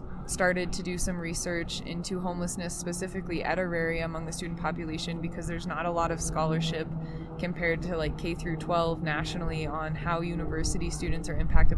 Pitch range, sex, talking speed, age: 160-185 Hz, female, 175 wpm, 20-39